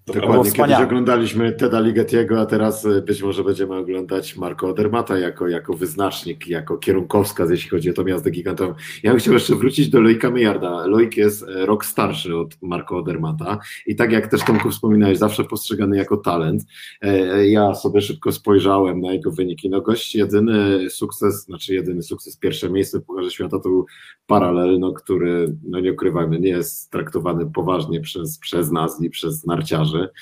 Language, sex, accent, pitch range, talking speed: Polish, male, native, 95-110 Hz, 165 wpm